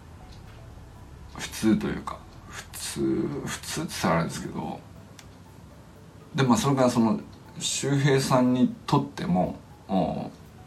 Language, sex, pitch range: Japanese, male, 105-170 Hz